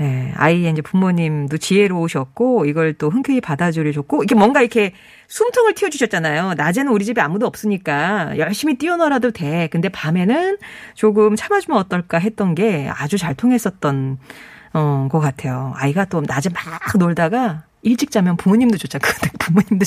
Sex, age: female, 40-59